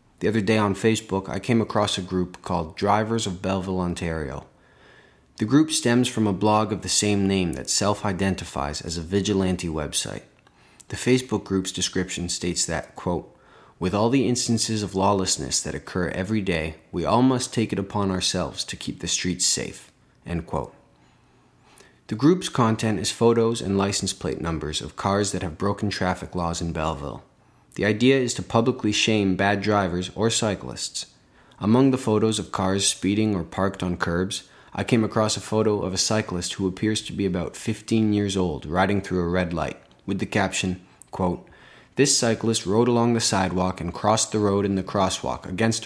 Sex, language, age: male, English, 30-49